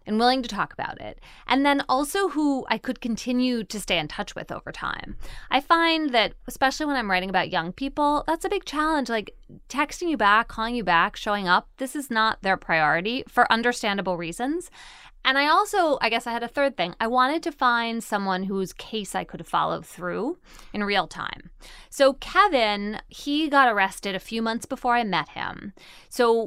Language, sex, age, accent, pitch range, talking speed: English, female, 20-39, American, 190-265 Hz, 200 wpm